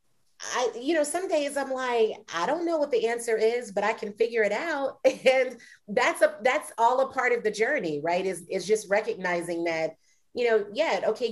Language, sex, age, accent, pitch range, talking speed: English, female, 30-49, American, 175-225 Hz, 210 wpm